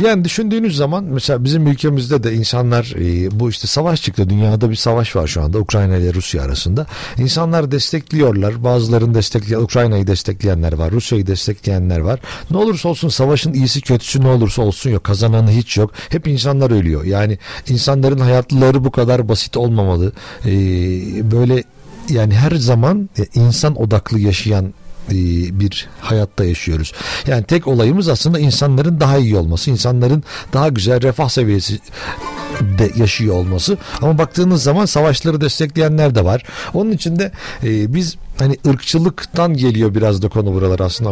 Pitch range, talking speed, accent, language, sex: 110-155 Hz, 145 wpm, native, Turkish, male